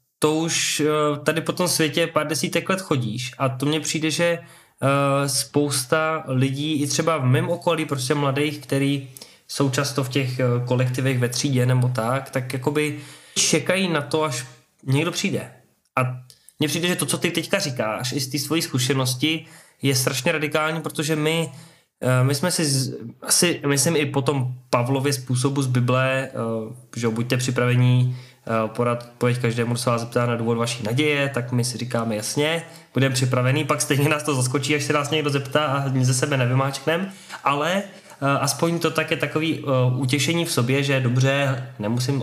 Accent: native